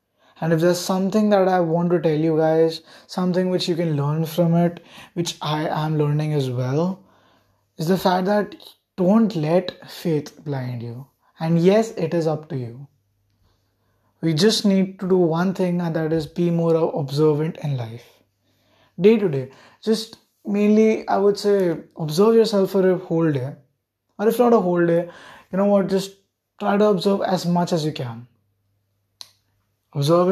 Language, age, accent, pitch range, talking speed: English, 20-39, Indian, 135-190 Hz, 175 wpm